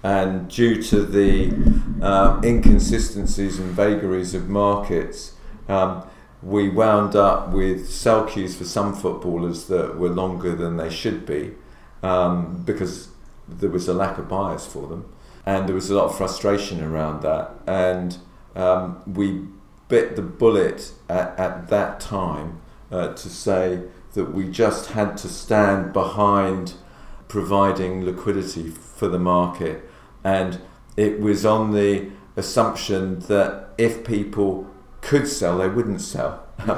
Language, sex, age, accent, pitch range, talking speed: English, male, 50-69, British, 90-100 Hz, 140 wpm